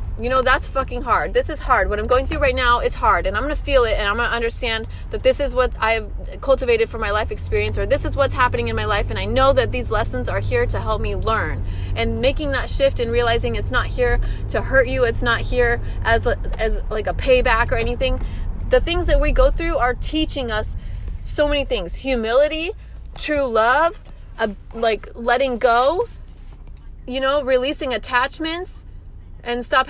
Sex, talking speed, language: female, 205 wpm, English